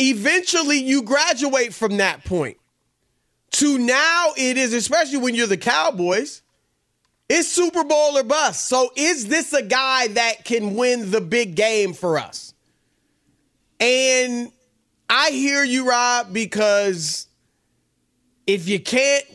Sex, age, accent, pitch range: male, 30-49, American, 210-275 Hz